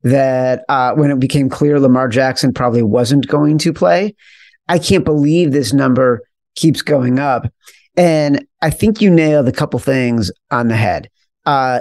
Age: 40-59